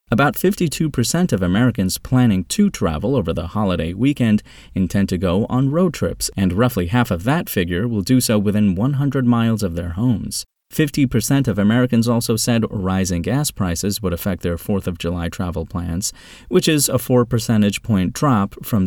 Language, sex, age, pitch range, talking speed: English, male, 30-49, 95-125 Hz, 180 wpm